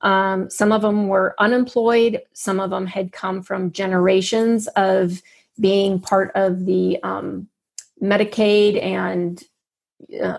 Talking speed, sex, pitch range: 125 wpm, female, 190-225 Hz